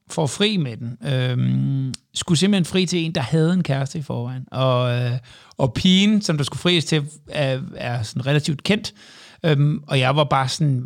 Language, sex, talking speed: Danish, male, 195 wpm